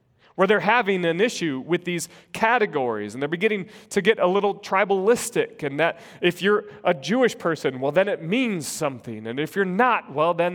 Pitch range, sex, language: 150-205 Hz, male, English